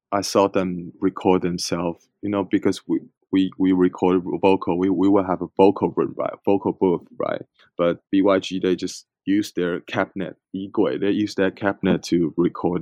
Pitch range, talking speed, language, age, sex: 90-100 Hz, 180 wpm, English, 20-39, male